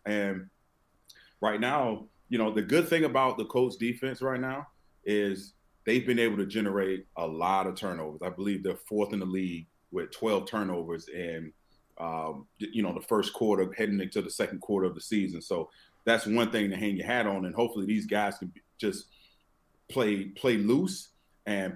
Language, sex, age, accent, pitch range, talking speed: English, male, 30-49, American, 95-115 Hz, 190 wpm